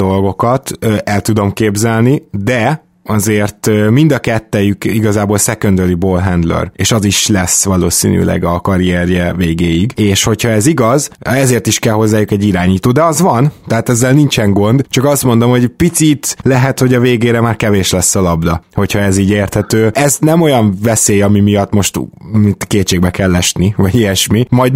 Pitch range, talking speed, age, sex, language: 95-120 Hz, 165 wpm, 20-39, male, Hungarian